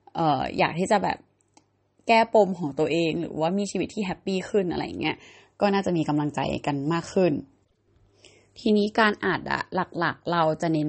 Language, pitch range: Thai, 150-190 Hz